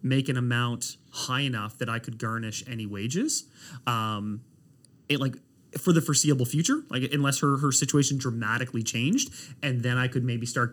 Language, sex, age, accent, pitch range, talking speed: English, male, 30-49, American, 115-140 Hz, 175 wpm